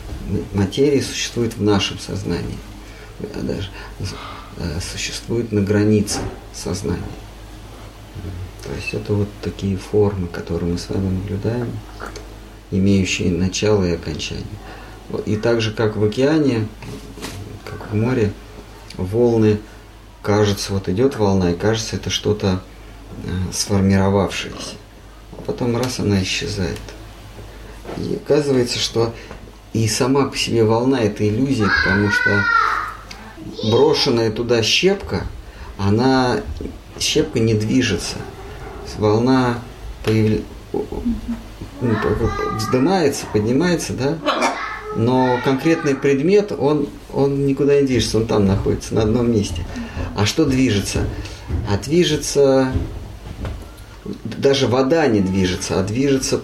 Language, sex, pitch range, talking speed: Russian, male, 100-120 Hz, 105 wpm